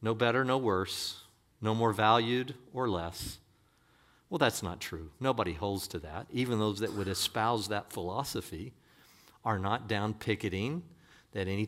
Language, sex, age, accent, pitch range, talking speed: English, male, 50-69, American, 100-135 Hz, 155 wpm